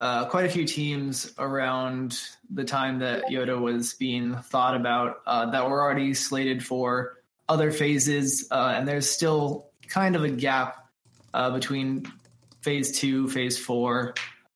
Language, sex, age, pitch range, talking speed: English, male, 20-39, 125-145 Hz, 150 wpm